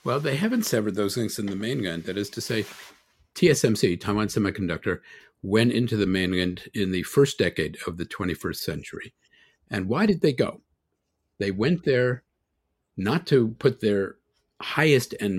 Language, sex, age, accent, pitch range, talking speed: English, male, 50-69, American, 95-120 Hz, 160 wpm